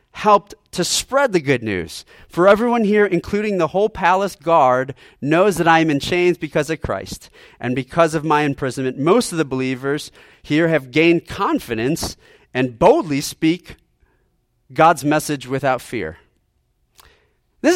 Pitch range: 115-175 Hz